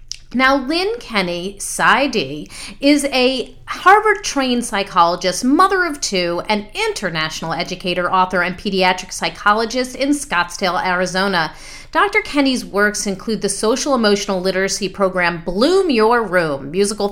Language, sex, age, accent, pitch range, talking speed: English, female, 40-59, American, 180-245 Hz, 120 wpm